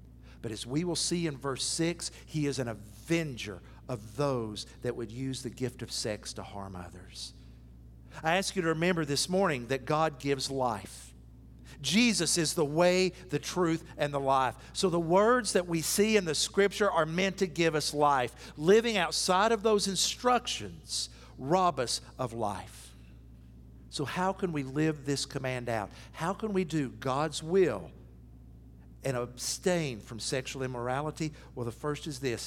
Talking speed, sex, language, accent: 170 wpm, male, English, American